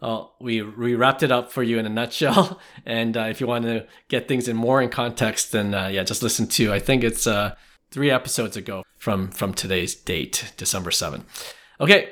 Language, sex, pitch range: English, male, 115-155 Hz